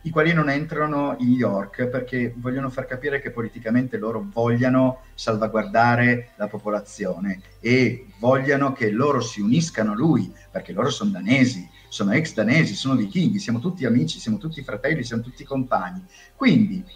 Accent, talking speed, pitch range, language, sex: native, 160 wpm, 110-145 Hz, Italian, male